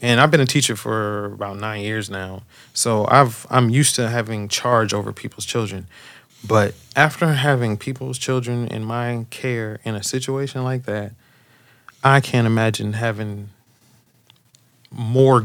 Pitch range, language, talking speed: 105-125 Hz, English, 155 wpm